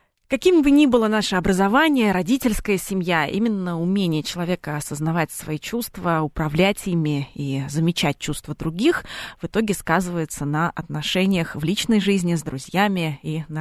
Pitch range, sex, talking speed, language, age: 160-210 Hz, female, 140 wpm, Russian, 20-39